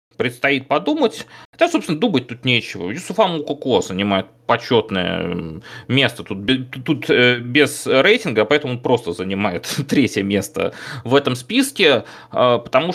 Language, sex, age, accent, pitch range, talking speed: Russian, male, 30-49, native, 100-130 Hz, 115 wpm